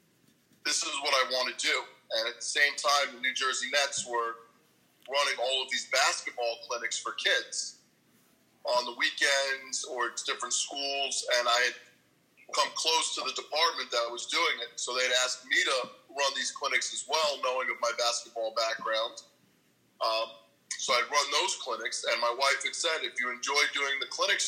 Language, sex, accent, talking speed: English, male, American, 185 wpm